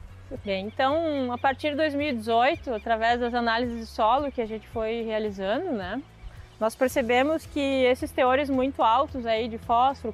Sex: female